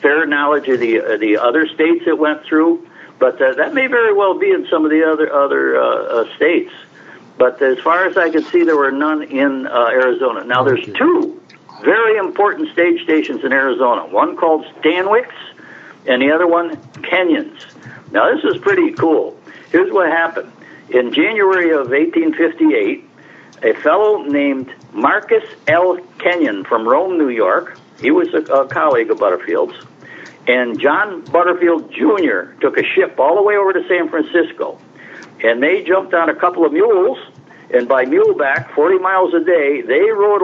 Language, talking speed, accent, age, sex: English, 175 wpm, American, 60-79, male